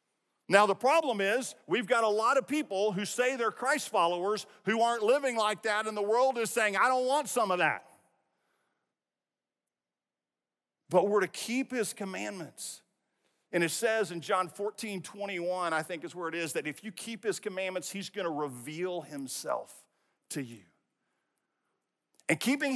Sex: male